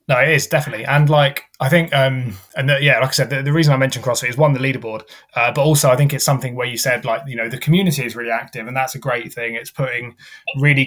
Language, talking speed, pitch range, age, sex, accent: English, 275 wpm, 120-140 Hz, 20-39, male, British